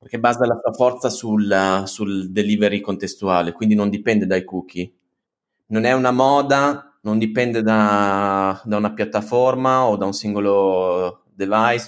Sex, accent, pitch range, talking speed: male, native, 105-130 Hz, 145 wpm